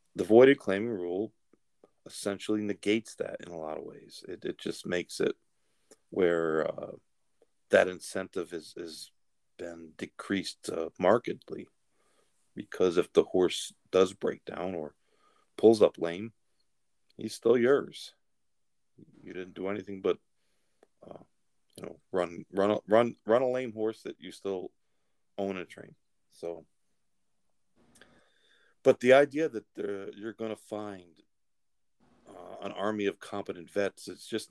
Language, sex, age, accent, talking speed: English, male, 40-59, American, 135 wpm